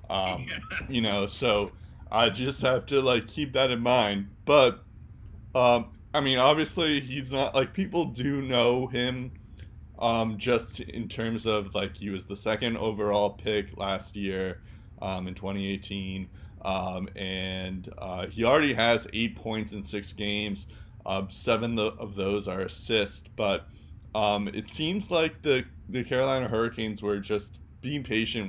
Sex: male